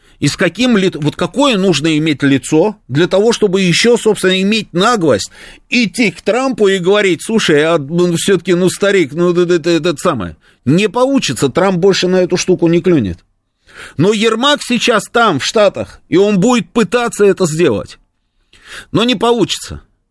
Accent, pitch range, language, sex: native, 140-195 Hz, Russian, male